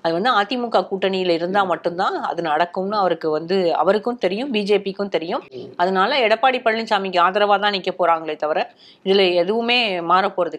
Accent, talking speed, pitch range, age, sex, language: native, 140 wpm, 170-215 Hz, 30-49, female, Tamil